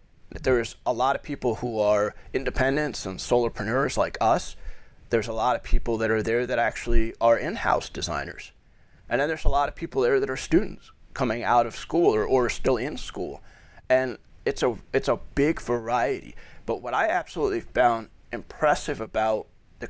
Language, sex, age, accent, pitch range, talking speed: English, male, 30-49, American, 105-140 Hz, 180 wpm